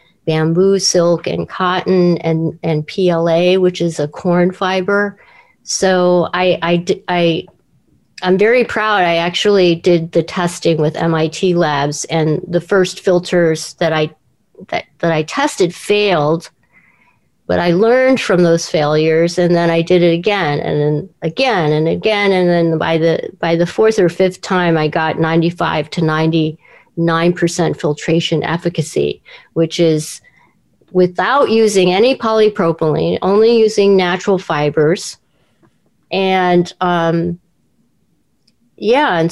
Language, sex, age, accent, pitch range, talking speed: English, female, 50-69, American, 165-190 Hz, 135 wpm